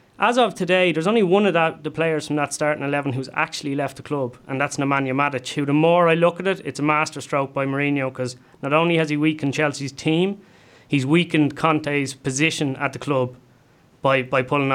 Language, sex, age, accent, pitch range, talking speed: English, male, 30-49, Irish, 140-165 Hz, 215 wpm